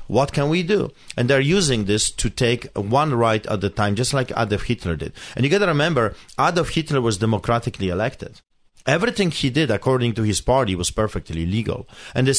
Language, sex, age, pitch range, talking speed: English, male, 40-59, 105-145 Hz, 200 wpm